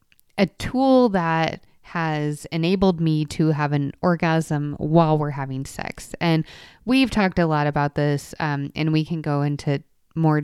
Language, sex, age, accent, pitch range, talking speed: English, female, 20-39, American, 150-185 Hz, 160 wpm